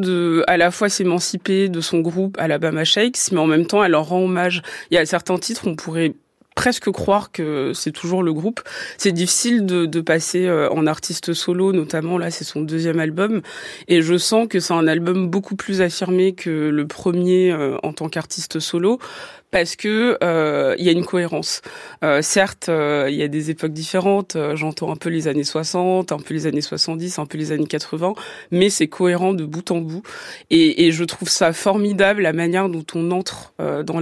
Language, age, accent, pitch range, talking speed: French, 20-39, French, 160-190 Hz, 205 wpm